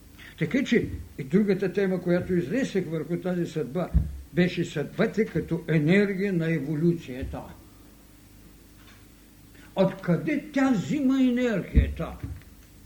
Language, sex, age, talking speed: Bulgarian, male, 60-79, 95 wpm